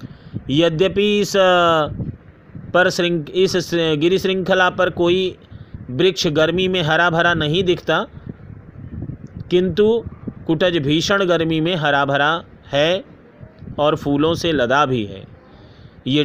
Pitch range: 135-180 Hz